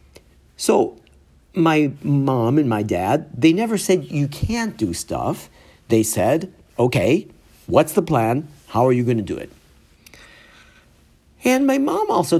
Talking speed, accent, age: 145 wpm, American, 50-69